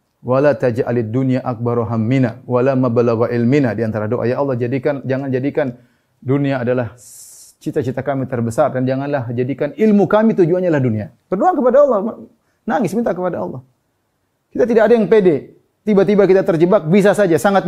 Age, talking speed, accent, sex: 30-49, 160 wpm, native, male